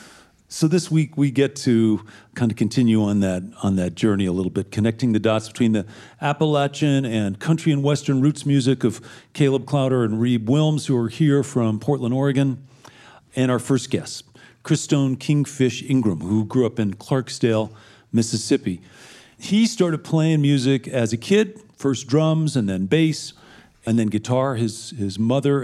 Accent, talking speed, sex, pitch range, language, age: American, 170 wpm, male, 105-135 Hz, English, 40-59